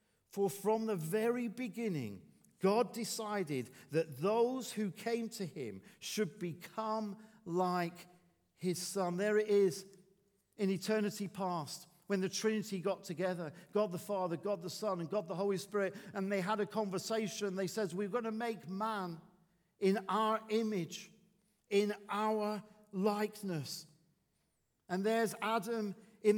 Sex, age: male, 50-69